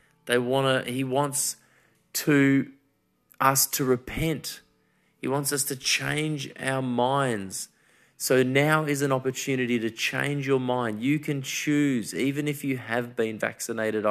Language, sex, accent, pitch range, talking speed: English, male, Australian, 115-145 Hz, 140 wpm